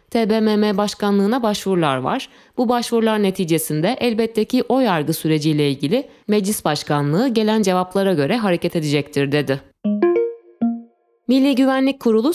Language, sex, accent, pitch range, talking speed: Turkish, female, native, 170-255 Hz, 115 wpm